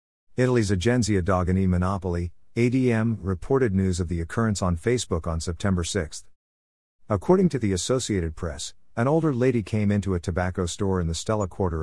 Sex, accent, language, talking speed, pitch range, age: male, American, English, 160 wpm, 85-115 Hz, 50-69